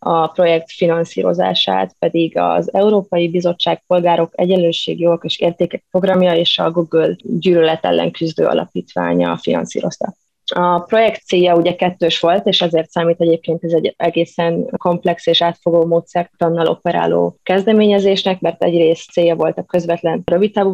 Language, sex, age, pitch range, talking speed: Hungarian, female, 20-39, 165-180 Hz, 135 wpm